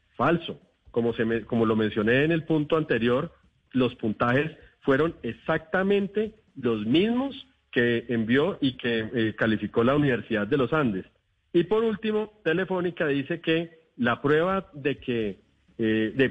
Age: 40-59